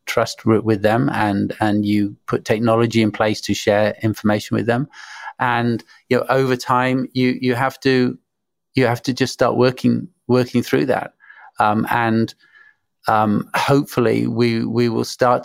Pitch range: 110-130 Hz